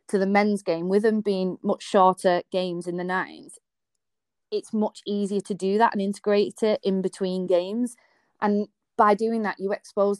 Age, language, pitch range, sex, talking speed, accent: 30-49, English, 185-205 Hz, female, 180 wpm, British